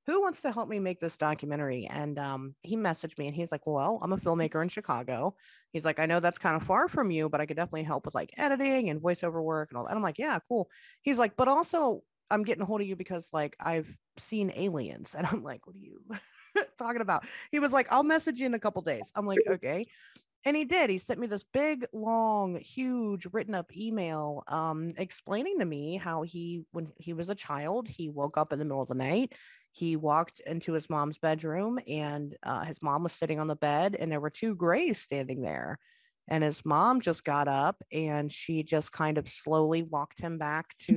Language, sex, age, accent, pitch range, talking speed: English, female, 30-49, American, 155-215 Hz, 230 wpm